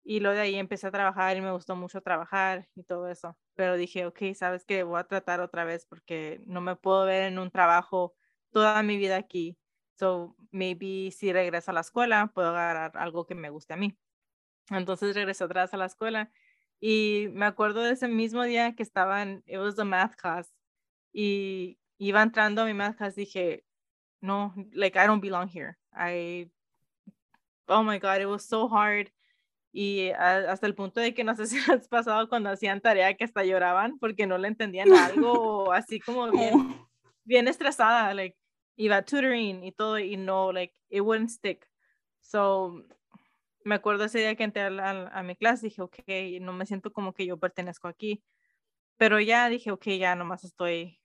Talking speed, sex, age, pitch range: 190 wpm, female, 20-39, 185-215 Hz